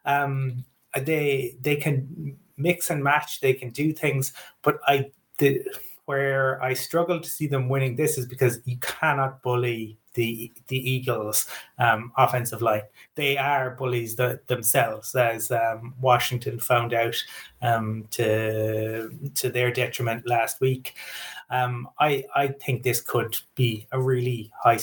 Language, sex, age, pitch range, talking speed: English, male, 30-49, 120-140 Hz, 145 wpm